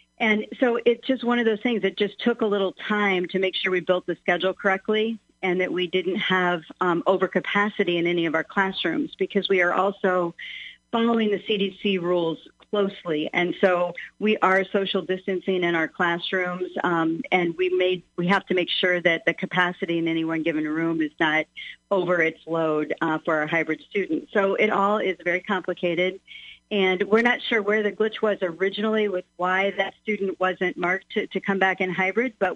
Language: English